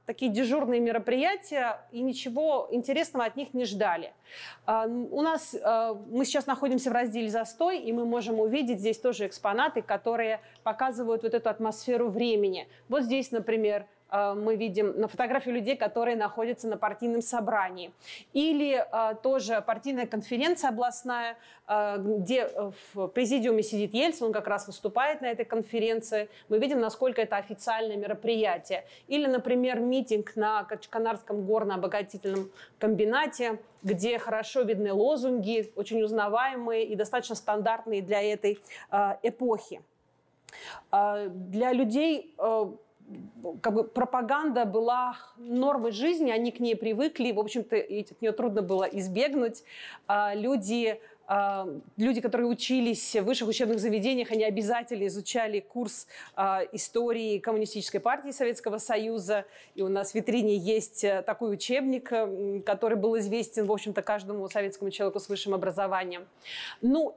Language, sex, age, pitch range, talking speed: Russian, female, 30-49, 210-245 Hz, 130 wpm